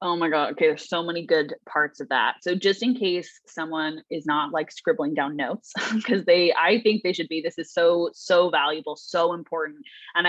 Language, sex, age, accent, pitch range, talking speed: English, female, 20-39, American, 155-205 Hz, 215 wpm